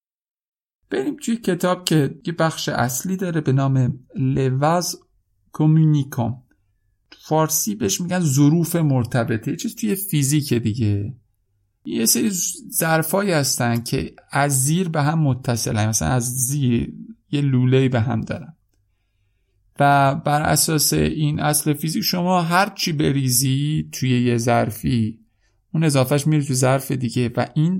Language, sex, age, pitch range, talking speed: Persian, male, 50-69, 115-155 Hz, 130 wpm